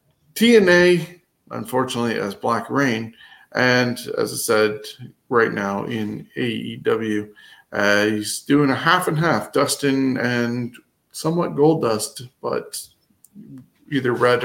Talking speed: 115 wpm